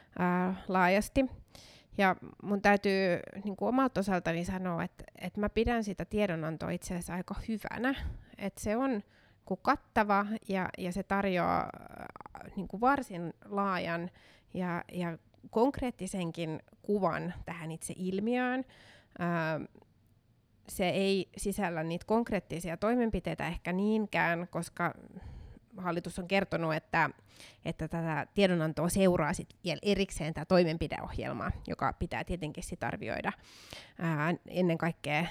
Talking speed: 105 wpm